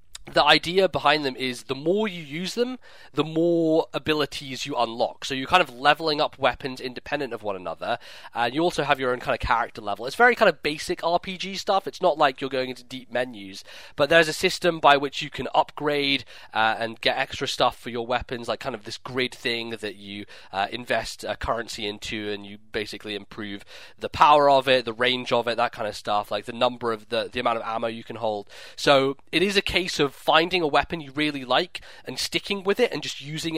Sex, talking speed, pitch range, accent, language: male, 230 wpm, 120-160 Hz, British, English